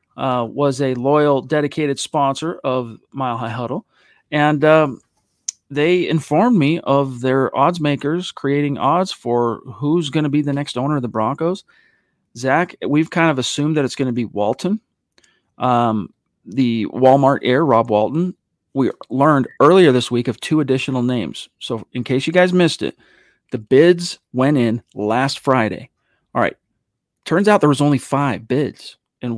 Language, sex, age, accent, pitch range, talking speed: English, male, 40-59, American, 125-150 Hz, 165 wpm